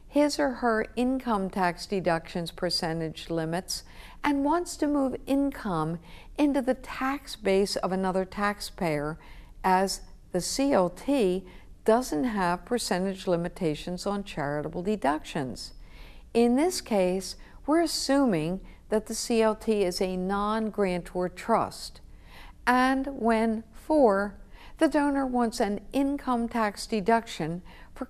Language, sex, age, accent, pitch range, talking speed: English, female, 60-79, American, 170-230 Hz, 115 wpm